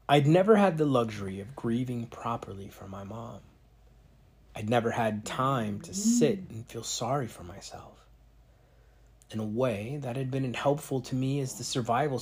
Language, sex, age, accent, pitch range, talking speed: English, male, 30-49, American, 115-150 Hz, 165 wpm